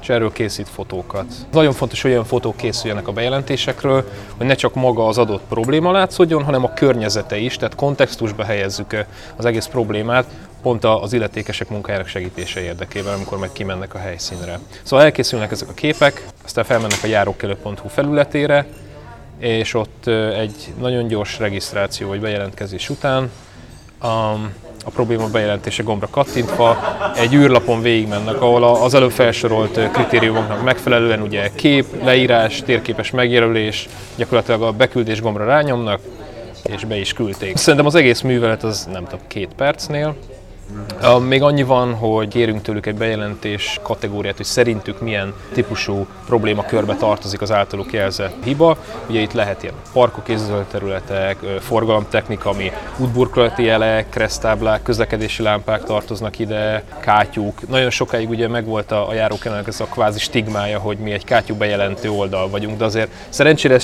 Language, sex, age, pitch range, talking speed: Hungarian, male, 30-49, 105-125 Hz, 145 wpm